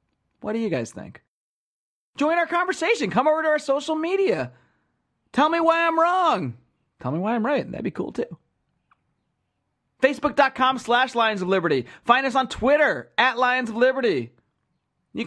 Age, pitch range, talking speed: 30-49, 155-240 Hz, 165 wpm